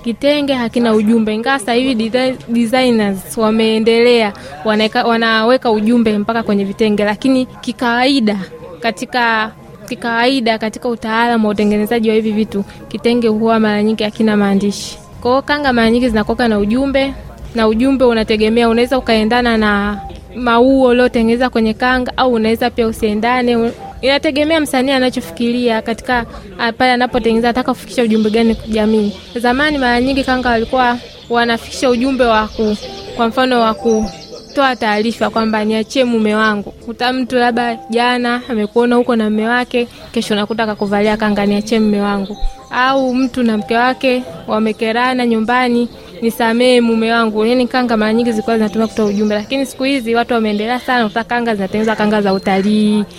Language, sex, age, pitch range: Swahili, female, 20-39, 220-245 Hz